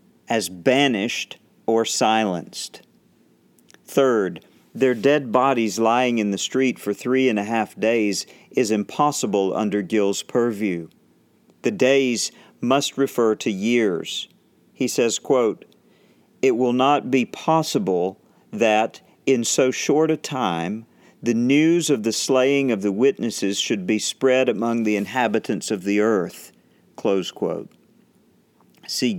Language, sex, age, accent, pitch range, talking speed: English, male, 50-69, American, 100-130 Hz, 130 wpm